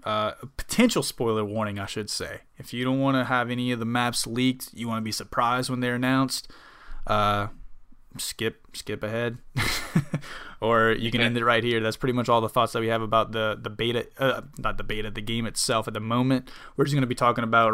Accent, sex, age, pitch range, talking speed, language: American, male, 20-39, 110-135 Hz, 230 wpm, English